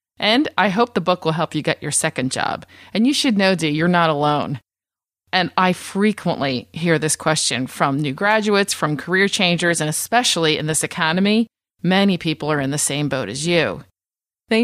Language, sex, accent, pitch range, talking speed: English, female, American, 155-220 Hz, 195 wpm